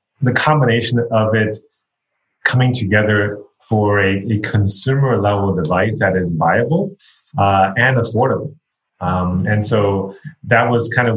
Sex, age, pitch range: male, 30-49, 95-115 Hz